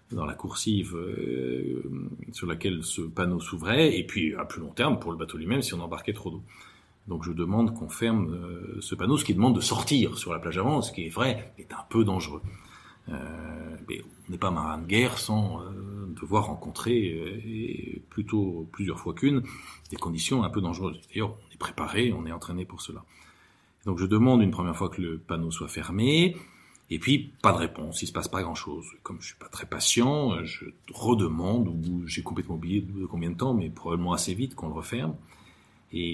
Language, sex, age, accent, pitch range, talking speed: French, male, 40-59, French, 85-110 Hz, 210 wpm